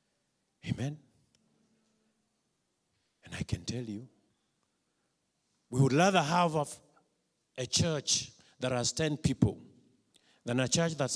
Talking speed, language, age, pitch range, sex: 110 wpm, English, 50-69, 125-210 Hz, male